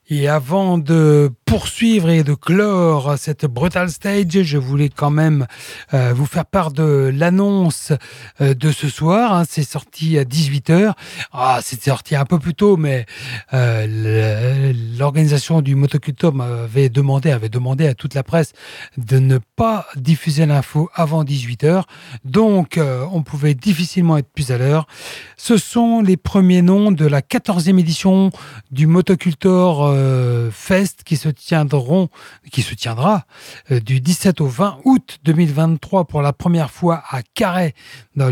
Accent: French